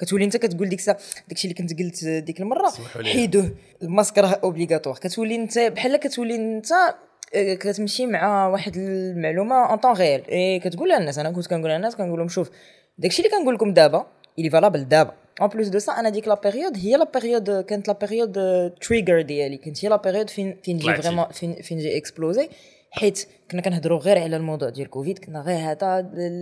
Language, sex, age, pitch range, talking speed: Arabic, female, 20-39, 165-210 Hz, 60 wpm